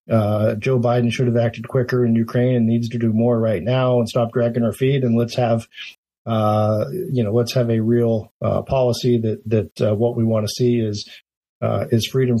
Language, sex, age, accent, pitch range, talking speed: English, male, 50-69, American, 115-125 Hz, 220 wpm